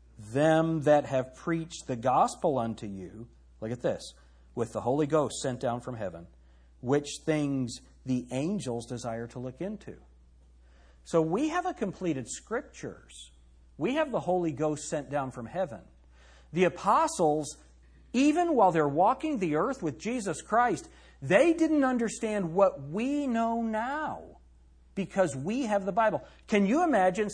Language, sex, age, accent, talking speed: English, male, 50-69, American, 150 wpm